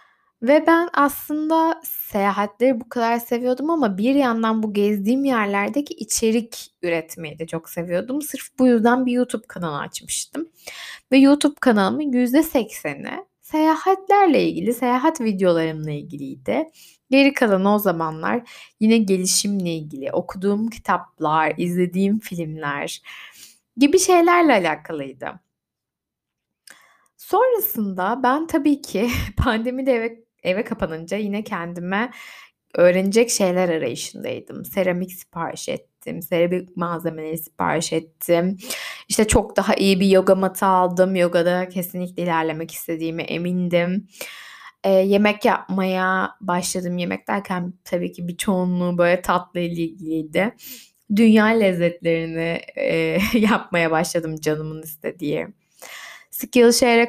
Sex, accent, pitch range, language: female, native, 175-245 Hz, Turkish